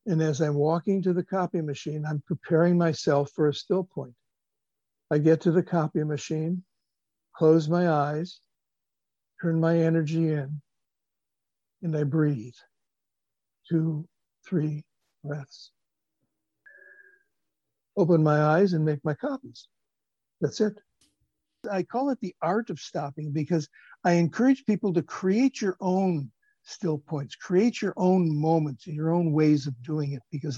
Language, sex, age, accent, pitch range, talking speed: English, male, 60-79, American, 150-185 Hz, 140 wpm